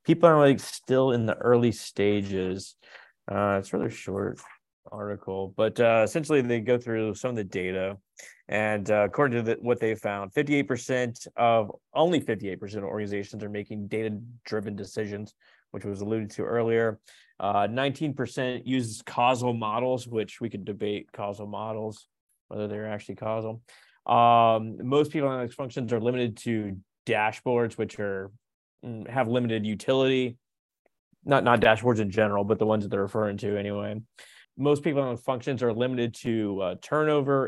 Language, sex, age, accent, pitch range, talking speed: English, male, 20-39, American, 105-125 Hz, 160 wpm